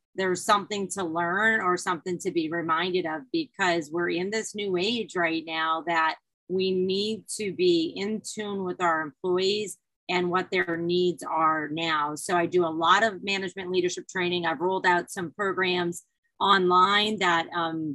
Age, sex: 30-49, female